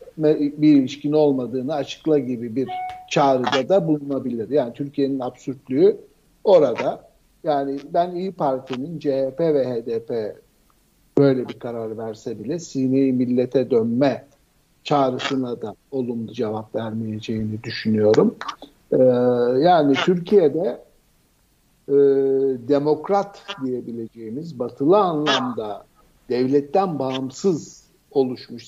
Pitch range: 125-155 Hz